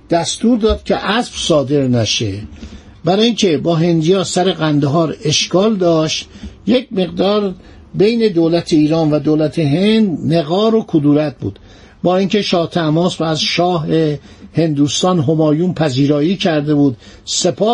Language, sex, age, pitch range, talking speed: Persian, male, 50-69, 145-190 Hz, 130 wpm